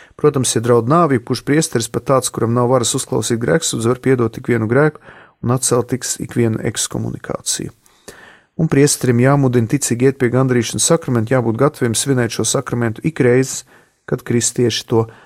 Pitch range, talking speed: 115-130 Hz, 155 wpm